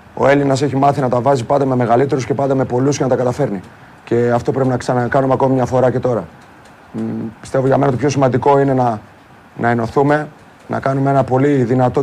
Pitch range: 125-145 Hz